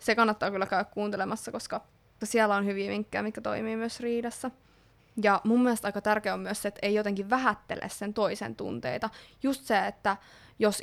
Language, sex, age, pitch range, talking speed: Finnish, female, 20-39, 195-220 Hz, 185 wpm